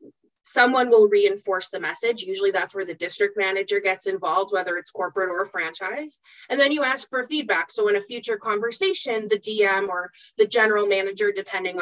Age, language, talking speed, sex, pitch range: 20-39, English, 185 wpm, female, 195-300 Hz